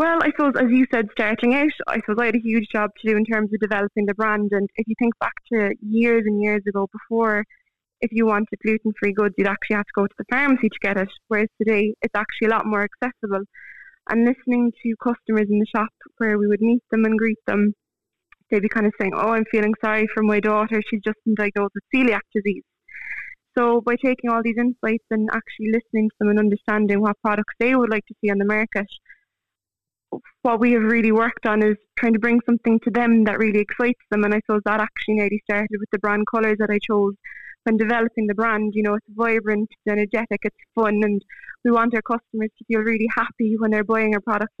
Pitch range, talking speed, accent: 210-235 Hz, 230 wpm, British